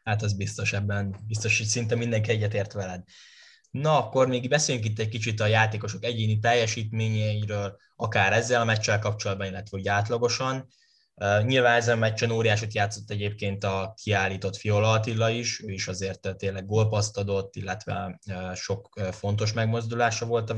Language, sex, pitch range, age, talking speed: Hungarian, male, 100-115 Hz, 10-29, 155 wpm